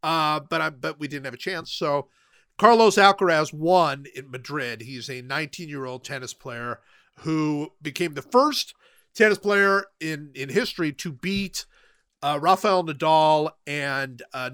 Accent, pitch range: American, 135-185 Hz